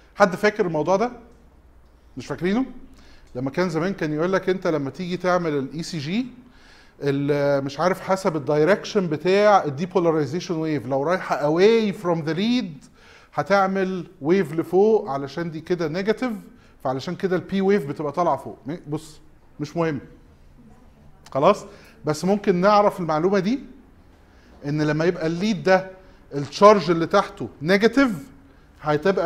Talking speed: 135 wpm